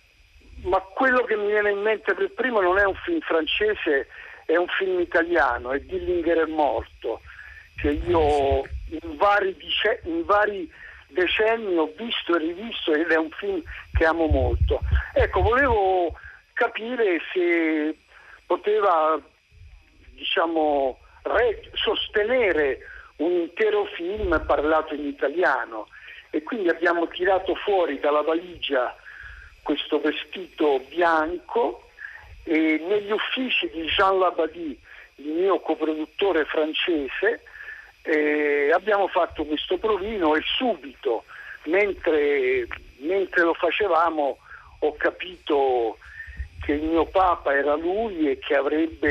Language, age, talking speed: Italian, 60-79, 115 wpm